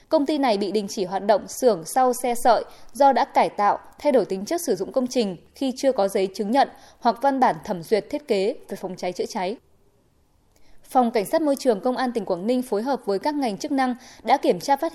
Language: Vietnamese